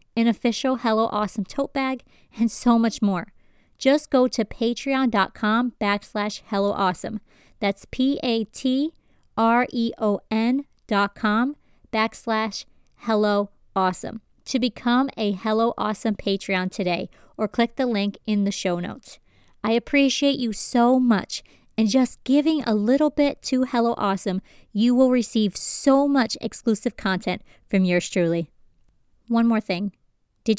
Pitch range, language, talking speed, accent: 205-250 Hz, English, 130 wpm, American